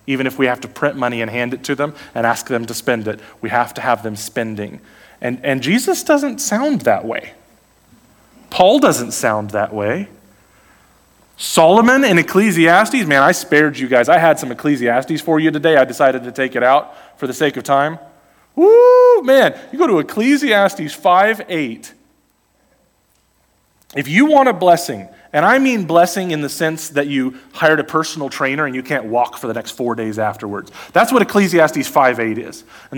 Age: 30-49